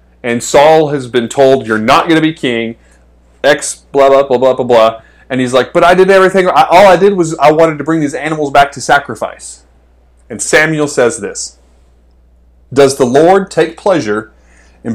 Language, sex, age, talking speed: English, male, 30-49, 195 wpm